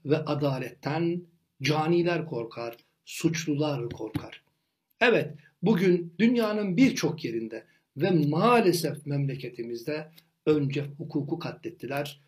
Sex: male